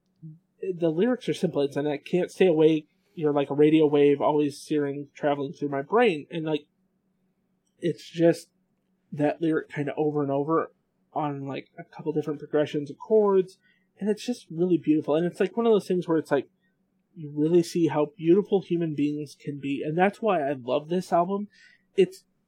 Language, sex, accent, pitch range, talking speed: English, male, American, 145-190 Hz, 190 wpm